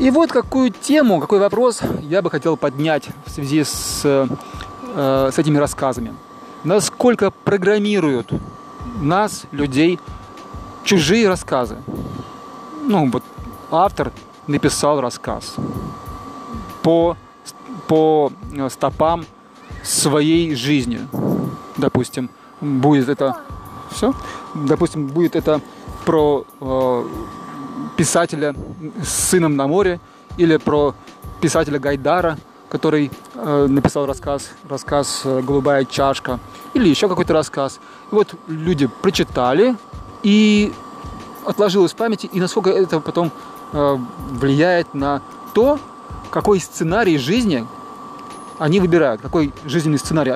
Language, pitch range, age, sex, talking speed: Russian, 140-190 Hz, 20-39, male, 100 wpm